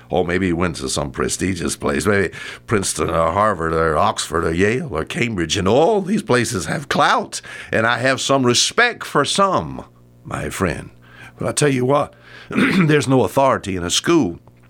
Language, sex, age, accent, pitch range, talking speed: English, male, 60-79, American, 85-130 Hz, 190 wpm